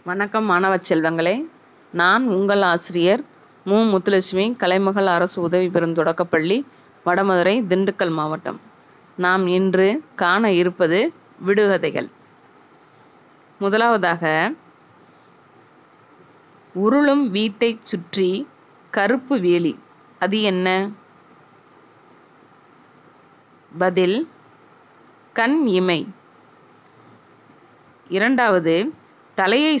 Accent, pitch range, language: Indian, 180-225 Hz, English